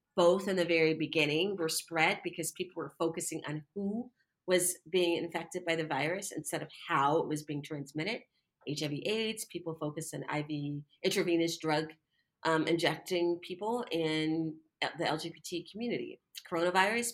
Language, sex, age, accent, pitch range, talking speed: English, female, 30-49, American, 160-220 Hz, 145 wpm